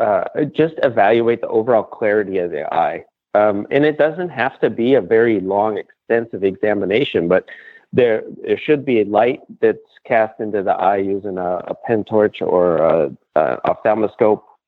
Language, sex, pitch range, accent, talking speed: English, male, 100-155 Hz, American, 170 wpm